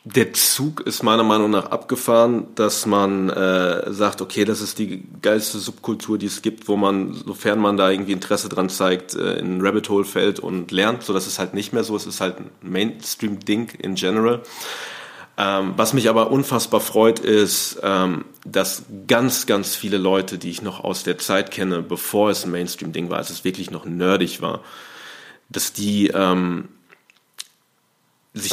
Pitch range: 95-105 Hz